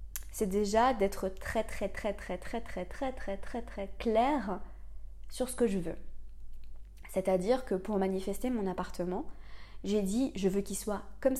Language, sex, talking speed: French, female, 170 wpm